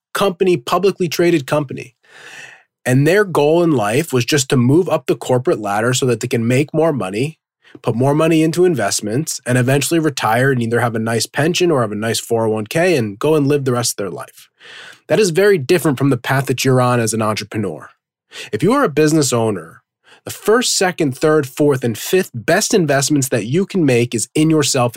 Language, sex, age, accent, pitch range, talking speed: English, male, 20-39, American, 125-160 Hz, 210 wpm